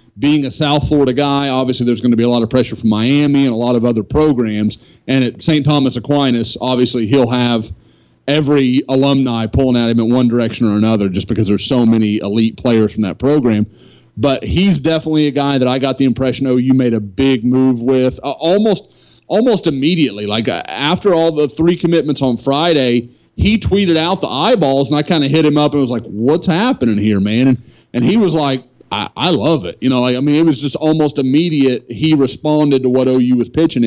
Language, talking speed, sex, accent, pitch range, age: English, 220 wpm, male, American, 125-165 Hz, 30-49